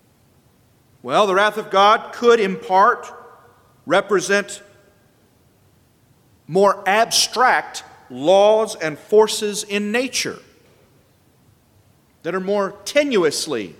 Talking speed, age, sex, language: 85 wpm, 40-59, male, English